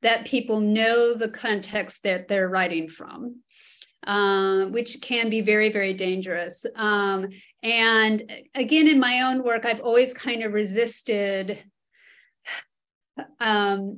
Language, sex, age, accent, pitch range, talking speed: English, female, 30-49, American, 200-245 Hz, 125 wpm